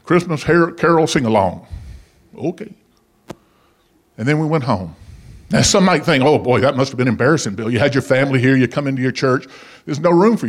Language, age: English, 50-69